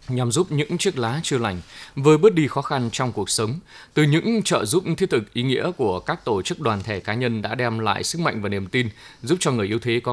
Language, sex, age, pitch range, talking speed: Vietnamese, male, 20-39, 110-150 Hz, 265 wpm